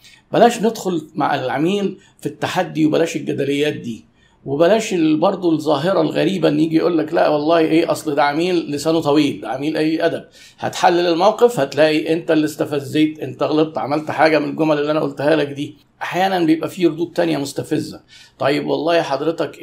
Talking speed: 165 wpm